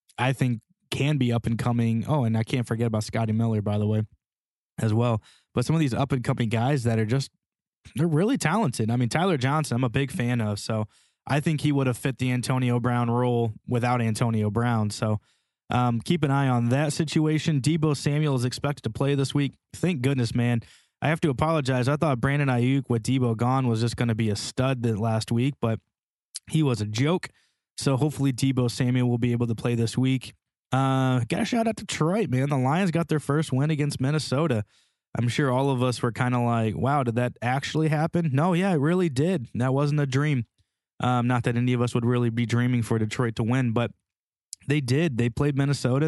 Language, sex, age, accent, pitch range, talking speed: English, male, 20-39, American, 120-145 Hz, 225 wpm